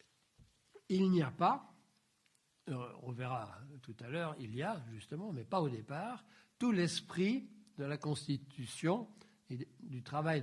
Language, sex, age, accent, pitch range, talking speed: French, male, 60-79, French, 135-185 Hz, 145 wpm